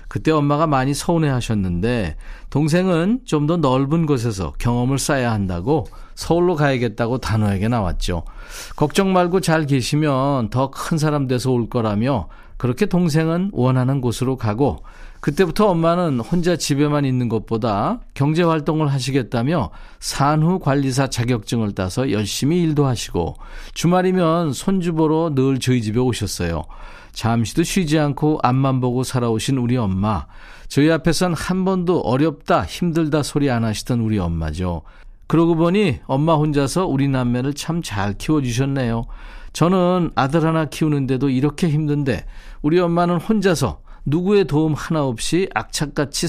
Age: 40-59